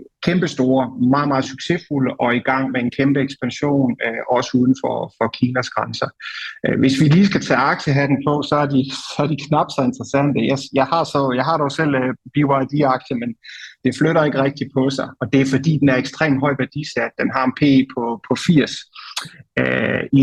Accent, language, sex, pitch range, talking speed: native, Danish, male, 125-145 Hz, 200 wpm